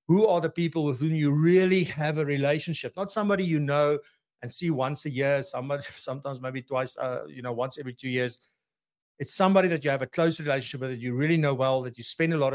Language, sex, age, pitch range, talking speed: English, male, 60-79, 130-165 Hz, 235 wpm